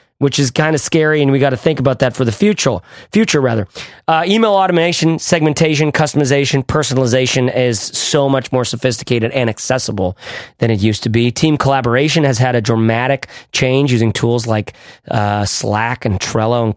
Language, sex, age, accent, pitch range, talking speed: English, male, 30-49, American, 115-155 Hz, 180 wpm